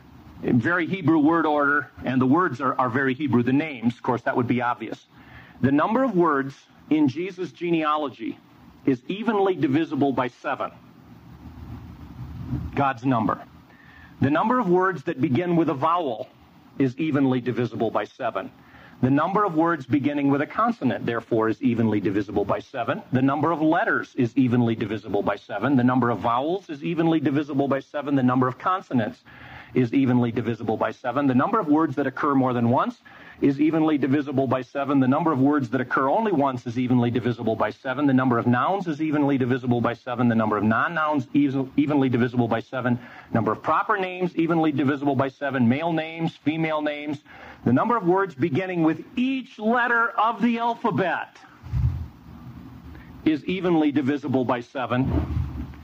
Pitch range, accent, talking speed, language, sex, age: 125-165 Hz, American, 175 wpm, English, male, 50-69